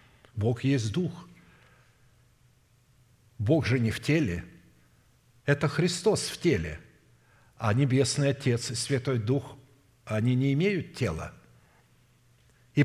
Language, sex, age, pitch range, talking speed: Russian, male, 60-79, 120-160 Hz, 105 wpm